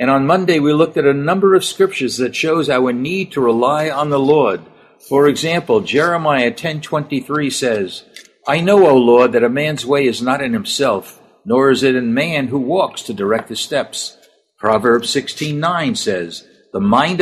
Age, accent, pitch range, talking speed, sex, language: 60-79, American, 135-170 Hz, 180 wpm, male, English